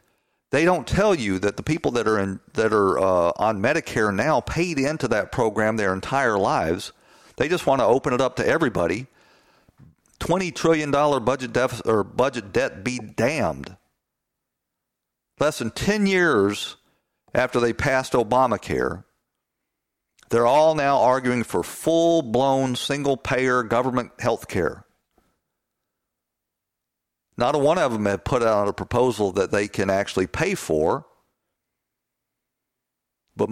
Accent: American